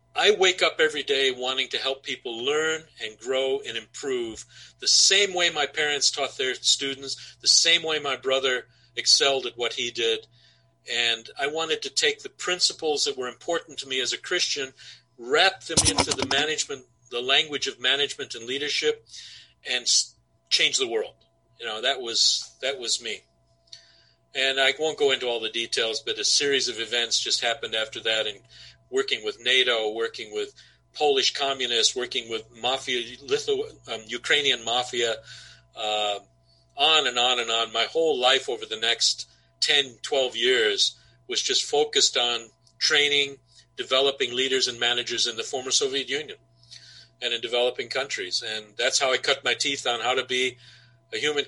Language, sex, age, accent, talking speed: English, male, 50-69, American, 170 wpm